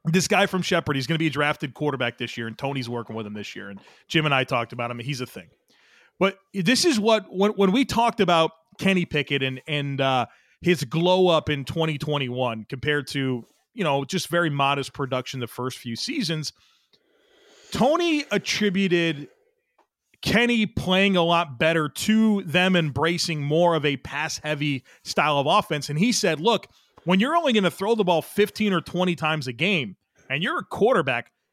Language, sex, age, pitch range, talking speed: English, male, 30-49, 145-190 Hz, 195 wpm